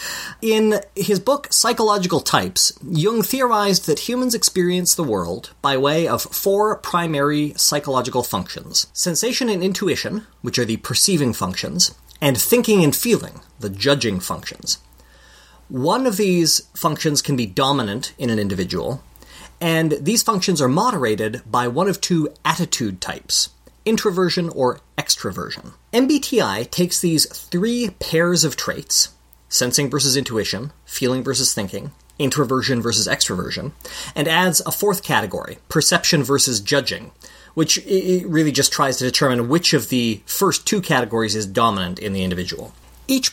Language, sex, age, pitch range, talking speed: English, male, 30-49, 125-190 Hz, 135 wpm